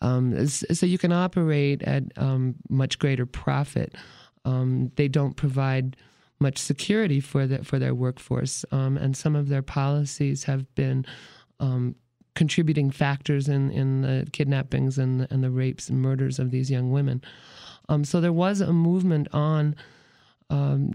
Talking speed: 160 wpm